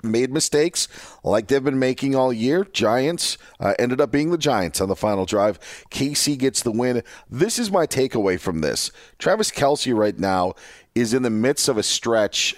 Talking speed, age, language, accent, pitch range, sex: 190 wpm, 40-59, English, American, 105-140 Hz, male